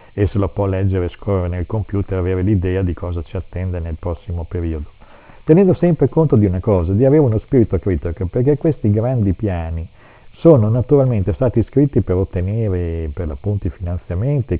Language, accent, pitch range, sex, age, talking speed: Italian, native, 90-110 Hz, male, 50-69, 170 wpm